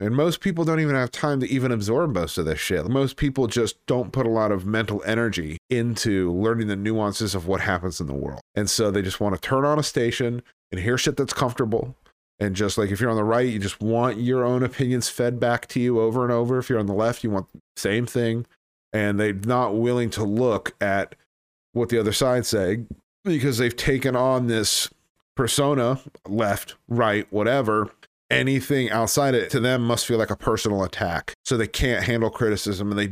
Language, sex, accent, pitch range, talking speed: English, male, American, 105-130 Hz, 215 wpm